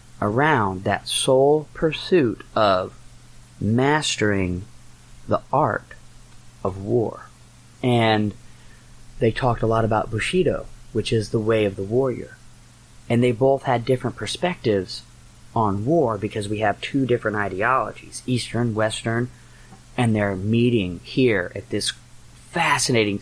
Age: 30-49